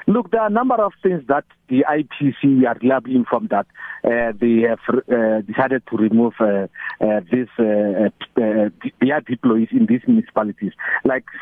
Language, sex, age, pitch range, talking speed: English, male, 50-69, 115-145 Hz, 175 wpm